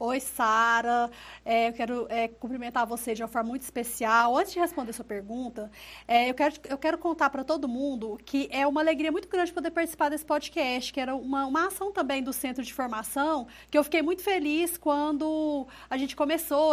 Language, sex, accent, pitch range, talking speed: Portuguese, female, Brazilian, 240-300 Hz, 200 wpm